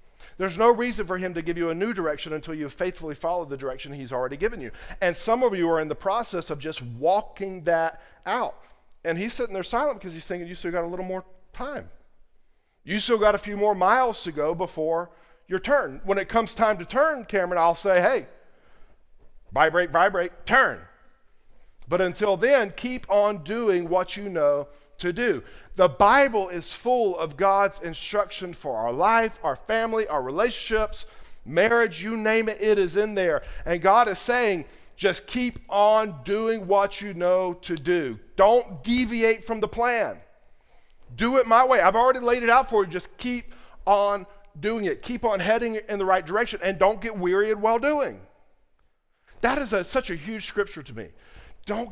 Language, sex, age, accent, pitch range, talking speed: English, male, 50-69, American, 175-225 Hz, 190 wpm